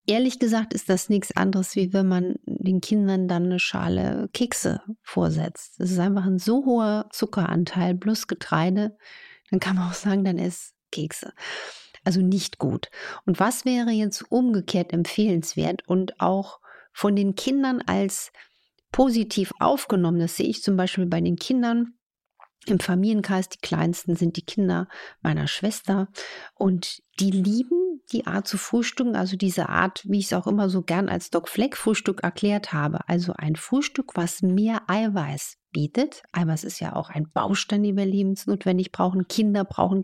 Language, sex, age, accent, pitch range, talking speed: German, female, 50-69, German, 180-215 Hz, 165 wpm